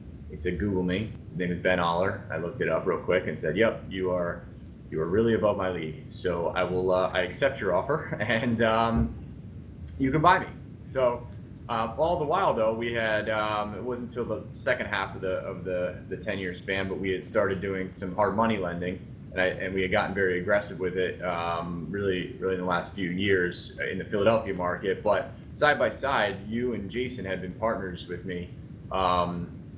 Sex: male